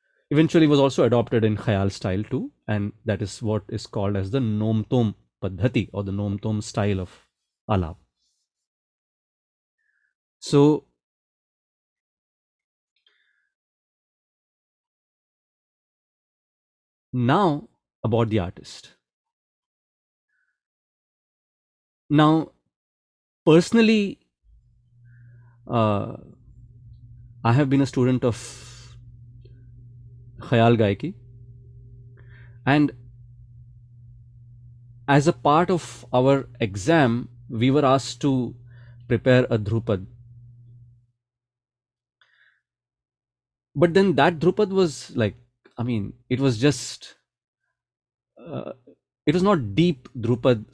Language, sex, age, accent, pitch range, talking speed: English, male, 30-49, Indian, 110-130 Hz, 85 wpm